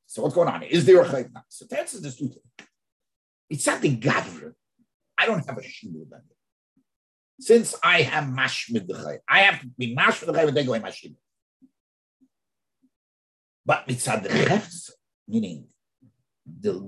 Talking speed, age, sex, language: 165 wpm, 50-69, male, English